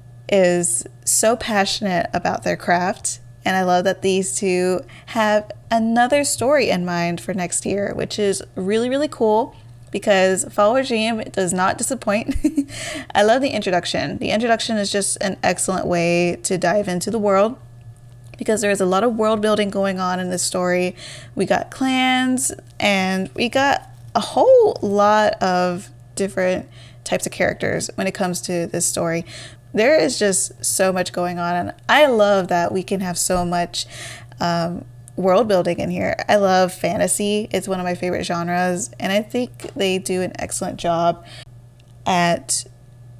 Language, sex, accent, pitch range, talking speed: English, female, American, 170-205 Hz, 165 wpm